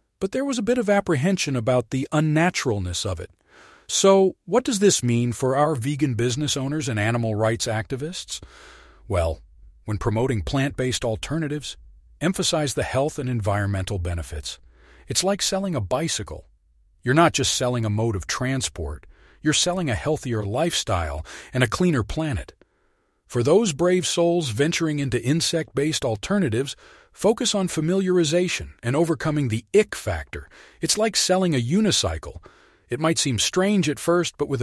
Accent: American